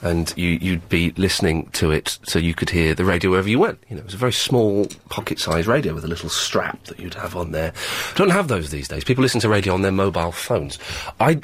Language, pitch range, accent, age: English, 95-155 Hz, British, 40-59